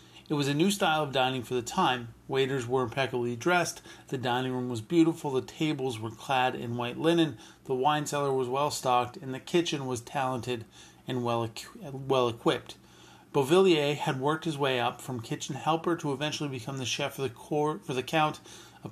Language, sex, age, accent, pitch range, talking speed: English, male, 40-59, American, 125-155 Hz, 195 wpm